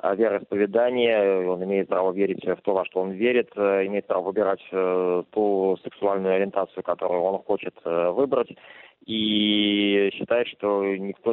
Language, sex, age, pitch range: Russian, male, 20-39, 90-105 Hz